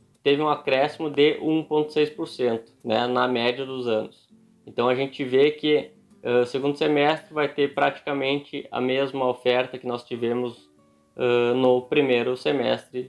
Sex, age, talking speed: male, 20-39, 140 wpm